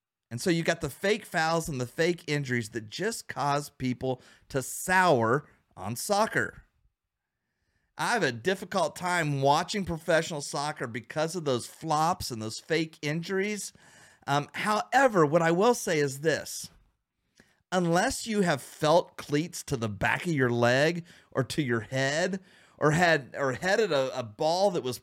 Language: English